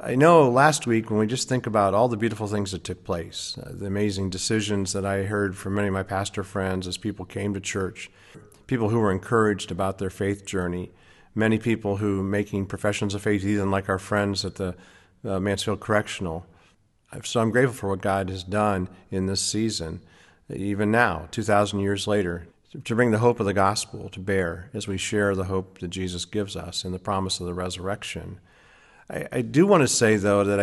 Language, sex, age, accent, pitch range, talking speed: English, male, 50-69, American, 95-115 Hz, 205 wpm